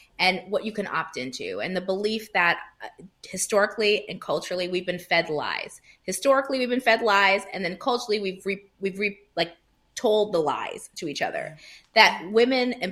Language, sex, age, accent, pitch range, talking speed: English, female, 30-49, American, 165-210 Hz, 180 wpm